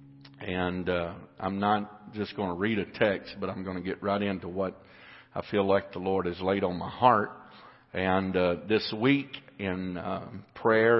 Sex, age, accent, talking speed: male, 50-69, American, 190 wpm